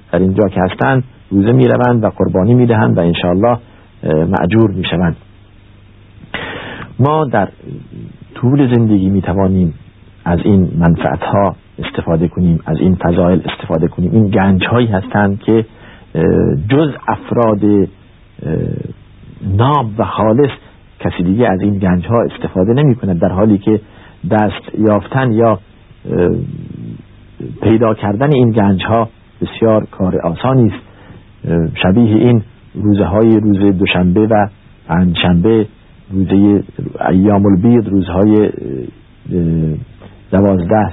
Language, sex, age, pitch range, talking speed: Persian, male, 50-69, 95-110 Hz, 115 wpm